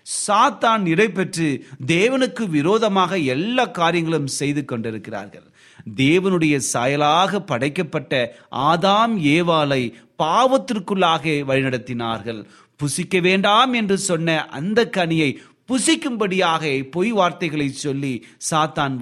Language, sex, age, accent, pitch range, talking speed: Tamil, male, 30-49, native, 125-185 Hz, 80 wpm